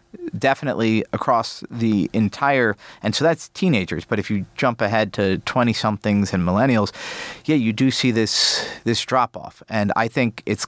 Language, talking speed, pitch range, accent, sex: English, 155 wpm, 105-135 Hz, American, male